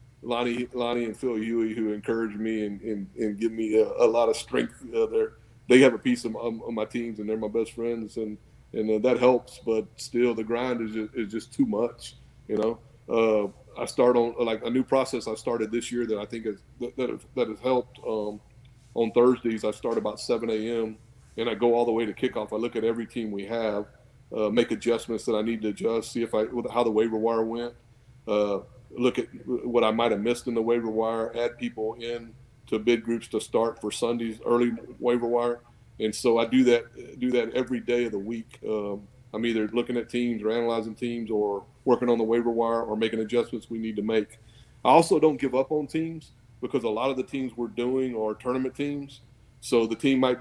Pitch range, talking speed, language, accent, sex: 110-125 Hz, 230 wpm, English, American, male